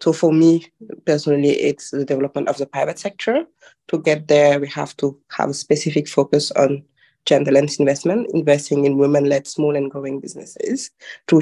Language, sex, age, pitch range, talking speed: English, female, 20-39, 145-180 Hz, 175 wpm